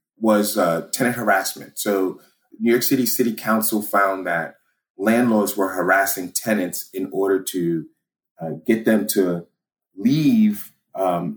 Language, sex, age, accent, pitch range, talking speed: English, male, 30-49, American, 85-110 Hz, 130 wpm